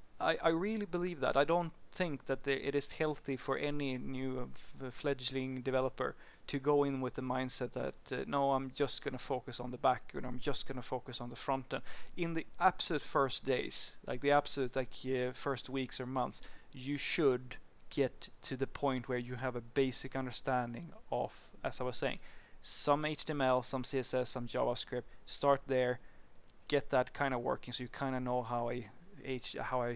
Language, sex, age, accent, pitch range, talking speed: English, male, 20-39, Swedish, 125-150 Hz, 200 wpm